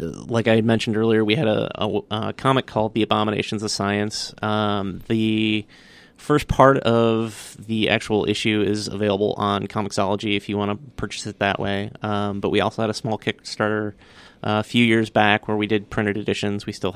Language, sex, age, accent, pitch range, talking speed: English, male, 30-49, American, 100-110 Hz, 190 wpm